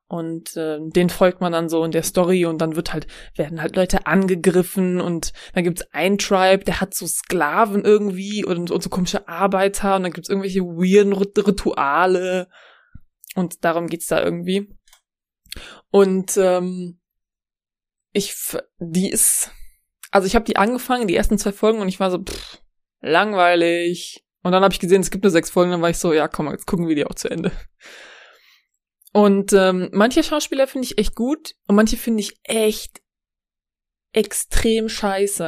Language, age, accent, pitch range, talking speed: German, 20-39, German, 180-215 Hz, 180 wpm